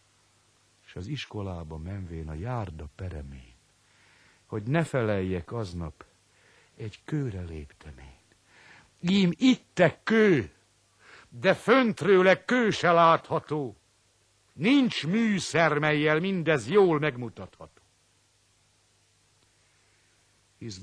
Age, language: 60-79, Hungarian